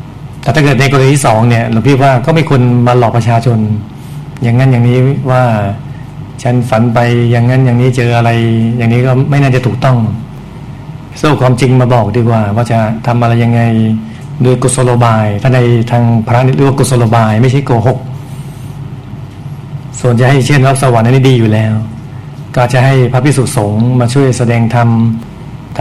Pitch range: 120-140 Hz